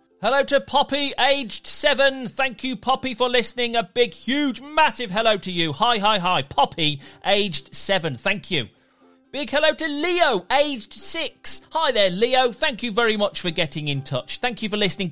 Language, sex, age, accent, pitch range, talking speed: English, male, 40-59, British, 170-255 Hz, 185 wpm